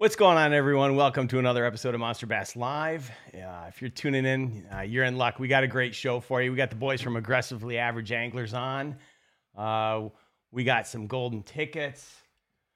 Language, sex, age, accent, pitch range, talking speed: English, male, 40-59, American, 105-135 Hz, 200 wpm